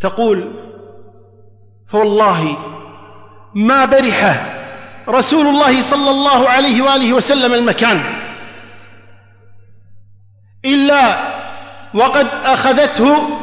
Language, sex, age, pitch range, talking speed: Arabic, male, 50-69, 200-290 Hz, 65 wpm